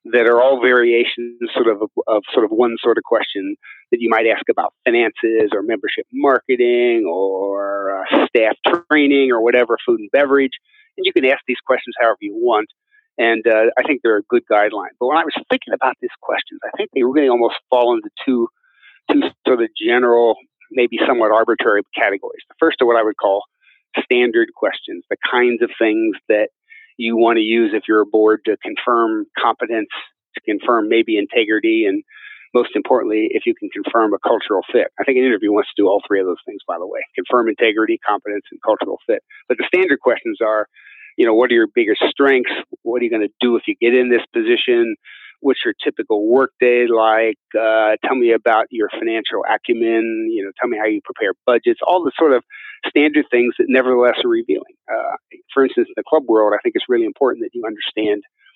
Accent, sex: American, male